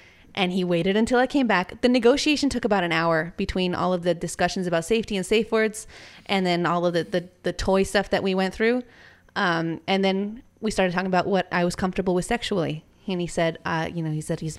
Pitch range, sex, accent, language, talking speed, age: 180-240 Hz, female, American, English, 240 wpm, 20-39